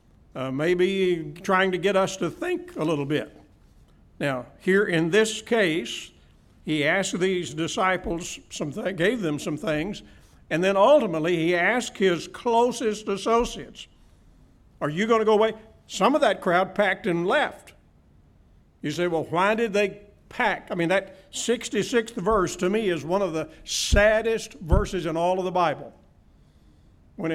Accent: American